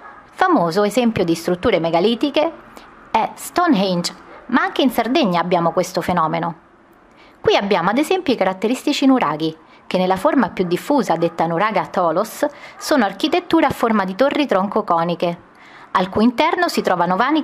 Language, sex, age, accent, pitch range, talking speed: Italian, female, 30-49, native, 185-285 Hz, 150 wpm